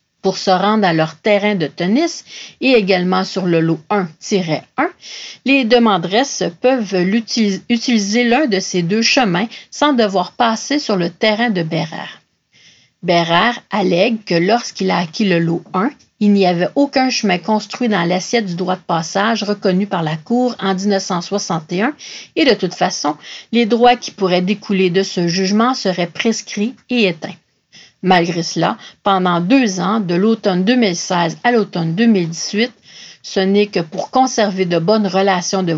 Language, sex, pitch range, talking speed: English, female, 180-225 Hz, 160 wpm